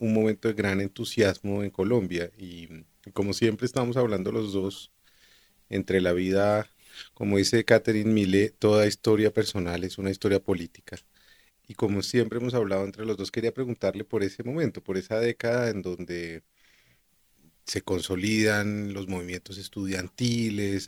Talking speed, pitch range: 145 wpm, 90-110 Hz